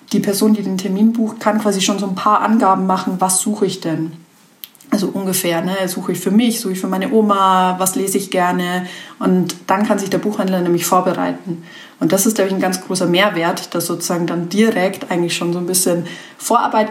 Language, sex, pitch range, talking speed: German, female, 180-220 Hz, 215 wpm